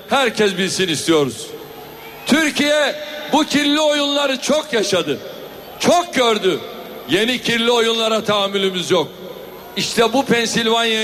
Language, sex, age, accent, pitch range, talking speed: Turkish, male, 60-79, native, 220-295 Hz, 105 wpm